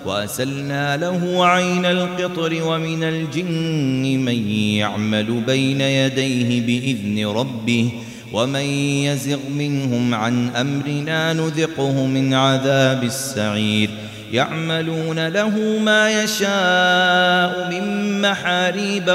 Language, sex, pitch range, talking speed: Arabic, male, 120-165 Hz, 85 wpm